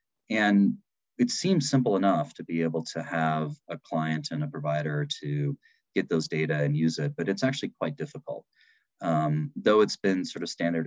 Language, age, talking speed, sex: English, 30-49, 190 wpm, male